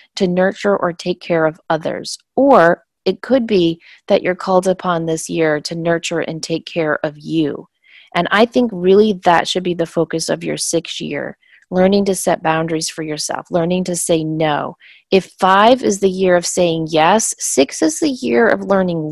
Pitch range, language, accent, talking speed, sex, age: 160-190 Hz, English, American, 190 wpm, female, 30-49